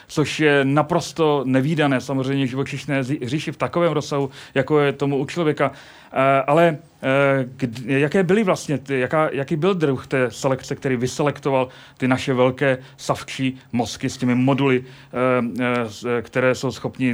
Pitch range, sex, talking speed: 130-155 Hz, male, 135 wpm